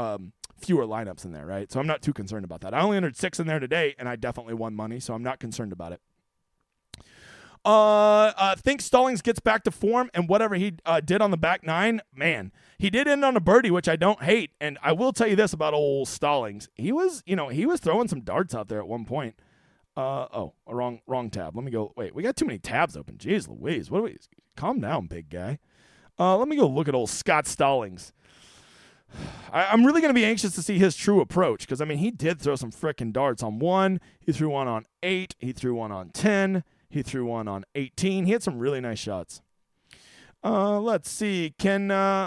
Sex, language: male, English